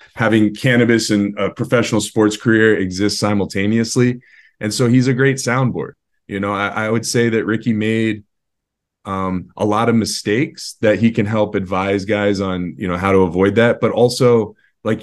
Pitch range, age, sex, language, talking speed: 100-120 Hz, 20-39, male, English, 180 wpm